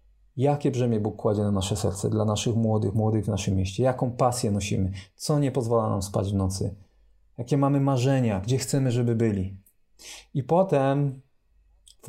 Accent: native